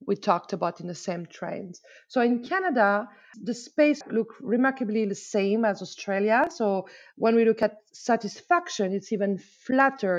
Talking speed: 160 wpm